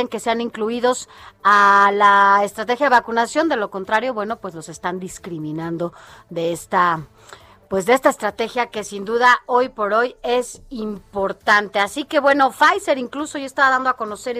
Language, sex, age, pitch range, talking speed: Spanish, female, 30-49, 200-255 Hz, 165 wpm